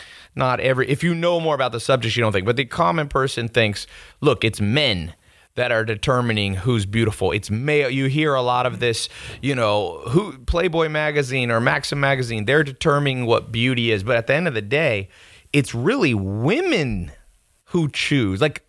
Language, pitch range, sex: English, 105-140 Hz, male